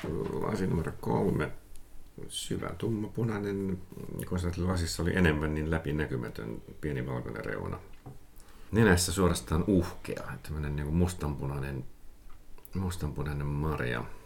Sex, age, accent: male, 50-69, native